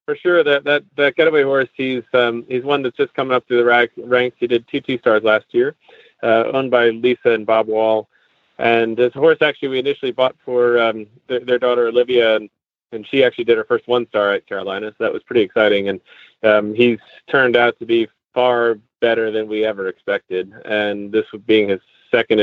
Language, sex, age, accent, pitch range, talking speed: English, male, 30-49, American, 110-155 Hz, 215 wpm